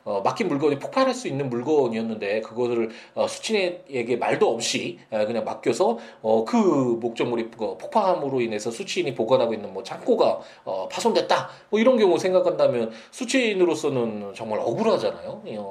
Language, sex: Korean, male